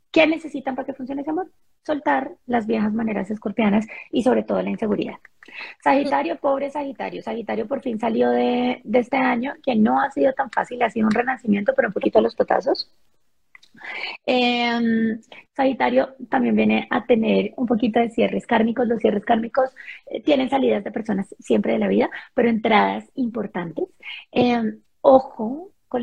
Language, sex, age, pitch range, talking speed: Spanish, female, 30-49, 220-270 Hz, 165 wpm